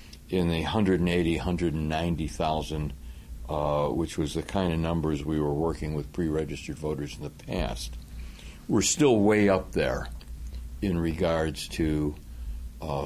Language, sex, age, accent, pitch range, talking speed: English, male, 60-79, American, 75-90 Hz, 130 wpm